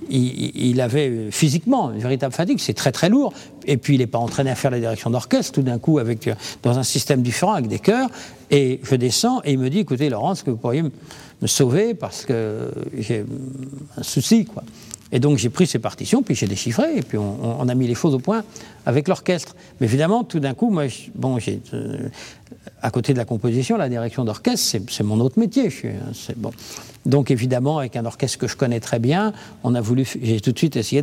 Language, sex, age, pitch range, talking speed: French, male, 50-69, 125-165 Hz, 230 wpm